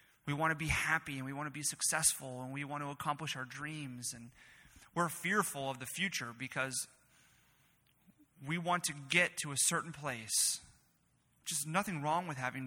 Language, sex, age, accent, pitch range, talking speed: English, male, 30-49, American, 135-160 Hz, 180 wpm